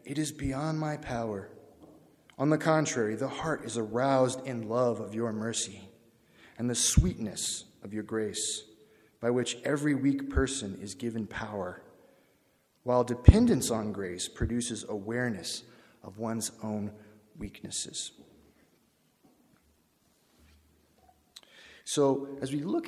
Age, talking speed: 30-49, 120 wpm